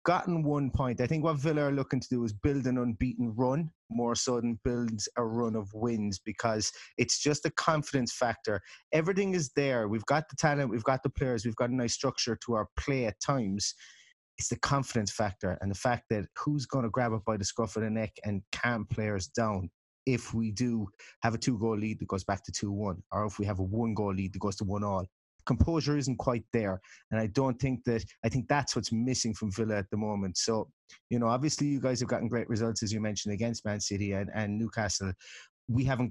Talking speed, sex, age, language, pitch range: 230 wpm, male, 30-49, English, 105-125 Hz